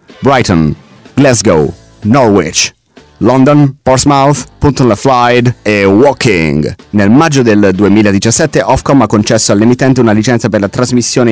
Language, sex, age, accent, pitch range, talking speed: English, male, 30-49, Italian, 100-130 Hz, 110 wpm